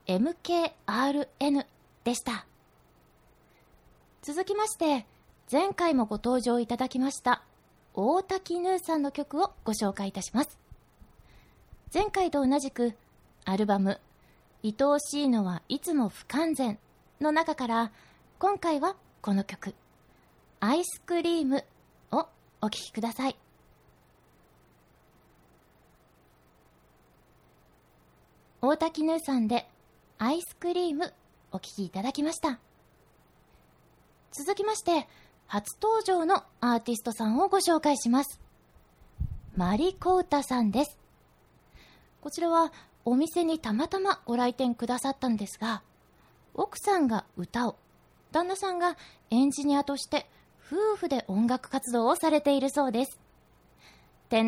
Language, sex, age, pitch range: Japanese, female, 20-39, 225-325 Hz